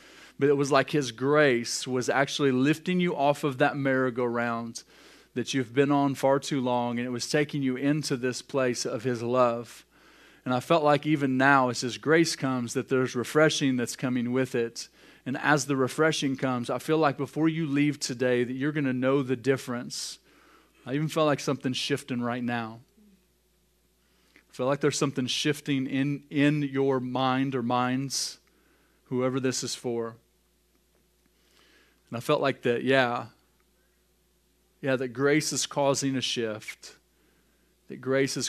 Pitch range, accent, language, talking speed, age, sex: 120-140 Hz, American, English, 170 wpm, 30-49, male